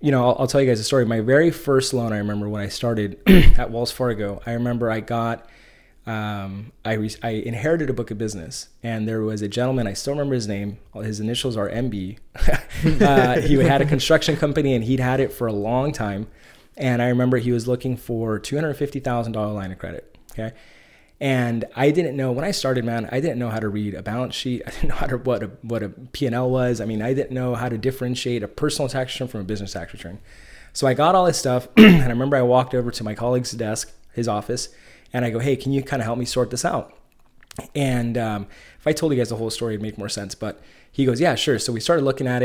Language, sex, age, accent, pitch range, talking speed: English, male, 20-39, American, 110-130 Hz, 250 wpm